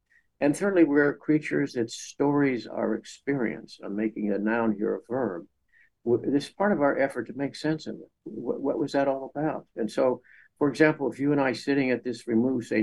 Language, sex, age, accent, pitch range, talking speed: English, male, 60-79, American, 115-140 Hz, 210 wpm